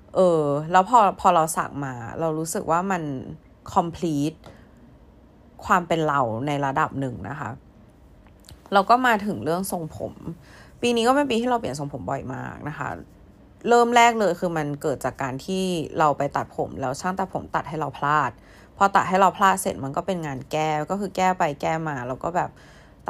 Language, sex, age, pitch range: Thai, female, 20-39, 140-190 Hz